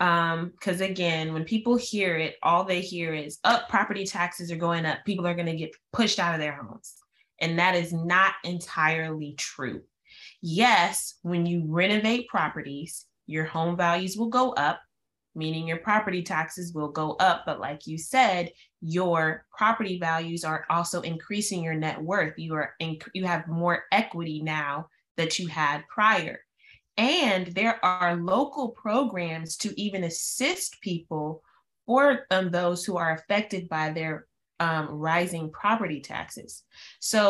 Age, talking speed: 20-39, 160 wpm